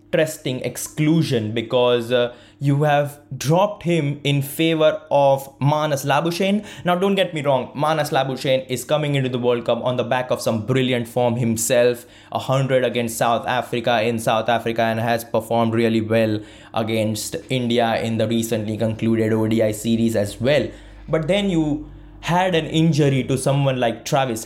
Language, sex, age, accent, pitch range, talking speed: English, male, 20-39, Indian, 115-145 Hz, 160 wpm